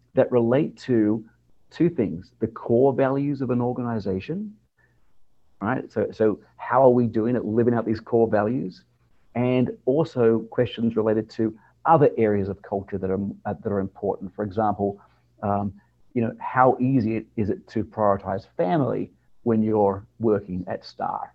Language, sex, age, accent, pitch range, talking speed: English, male, 50-69, Australian, 105-125 Hz, 155 wpm